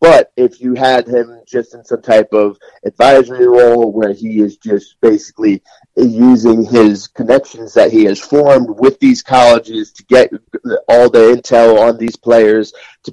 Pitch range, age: 110-140 Hz, 30-49